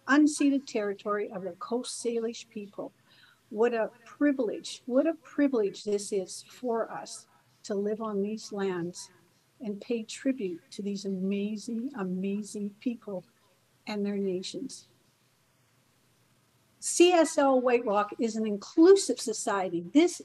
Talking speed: 120 wpm